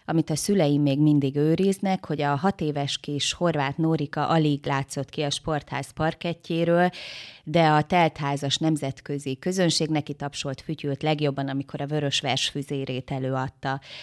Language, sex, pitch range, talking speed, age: Hungarian, female, 145-170 Hz, 140 wpm, 20-39